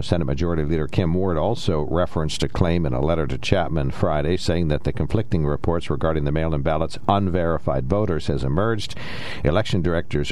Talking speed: 175 wpm